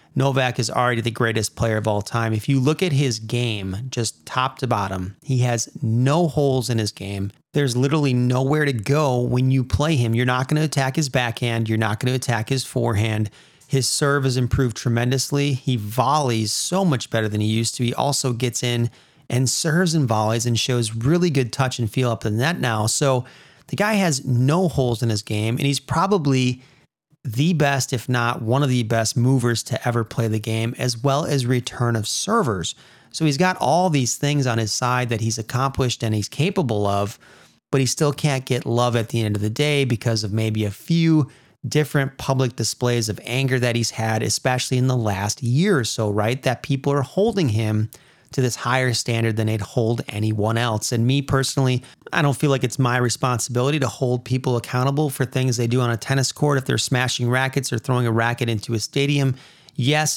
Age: 30-49